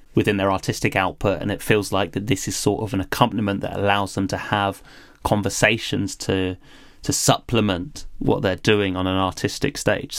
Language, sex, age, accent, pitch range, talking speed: English, male, 30-49, British, 100-130 Hz, 185 wpm